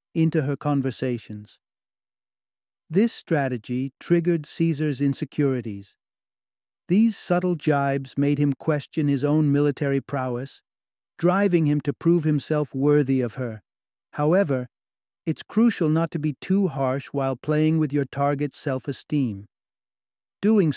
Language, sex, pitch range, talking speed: English, male, 130-160 Hz, 120 wpm